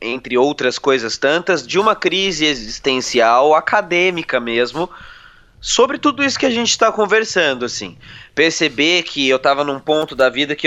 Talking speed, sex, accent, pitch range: 155 wpm, male, Brazilian, 135-200 Hz